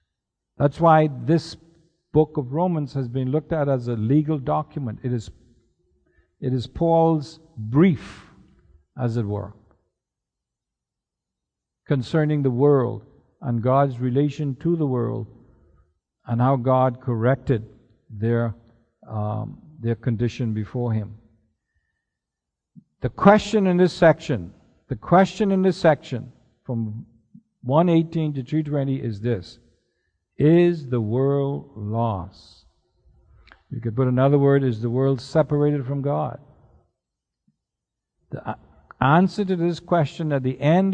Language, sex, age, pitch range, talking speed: English, male, 50-69, 115-155 Hz, 120 wpm